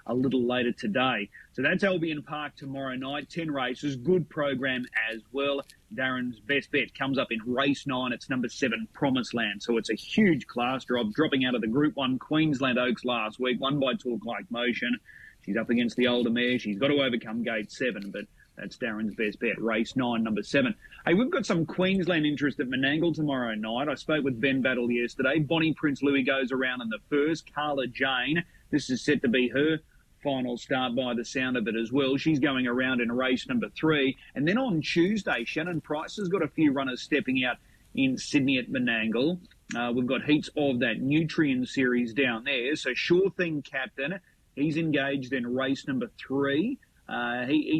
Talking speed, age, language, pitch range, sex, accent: 200 wpm, 30-49, English, 125-155 Hz, male, Australian